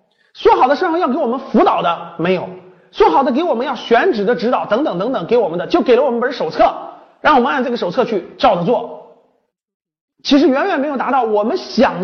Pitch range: 195-295 Hz